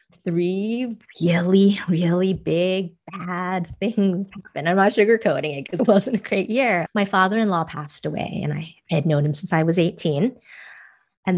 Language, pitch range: English, 170-210 Hz